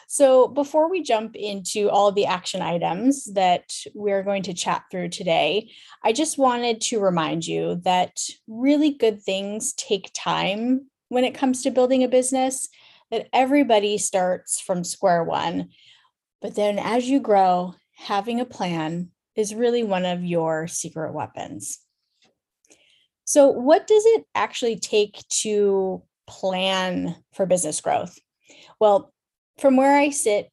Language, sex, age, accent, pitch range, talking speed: English, female, 10-29, American, 190-260 Hz, 145 wpm